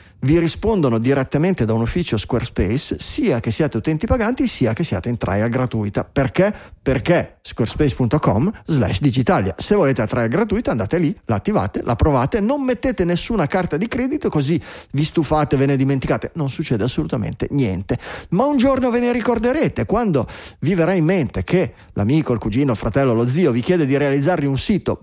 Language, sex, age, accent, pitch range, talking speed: Italian, male, 30-49, native, 120-165 Hz, 175 wpm